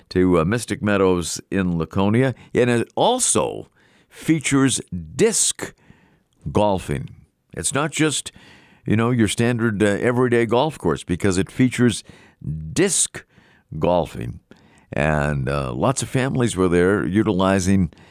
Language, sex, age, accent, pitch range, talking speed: English, male, 50-69, American, 85-120 Hz, 120 wpm